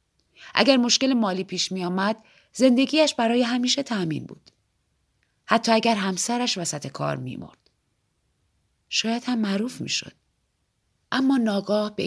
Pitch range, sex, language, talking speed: 170-220 Hz, female, Persian, 120 wpm